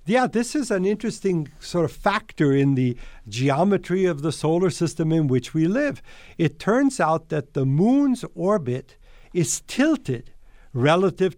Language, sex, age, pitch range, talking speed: English, male, 60-79, 135-190 Hz, 155 wpm